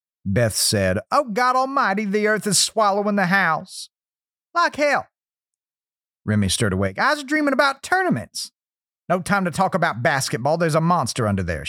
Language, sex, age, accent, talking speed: English, male, 30-49, American, 165 wpm